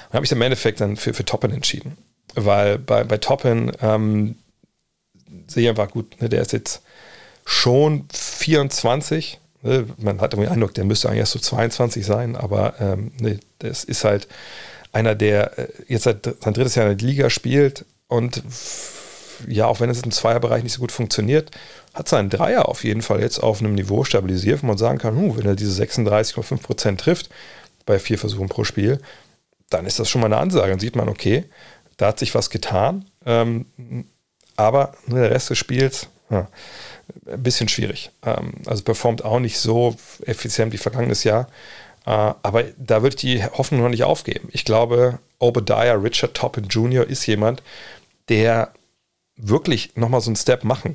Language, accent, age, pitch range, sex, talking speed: German, German, 40-59, 105-125 Hz, male, 180 wpm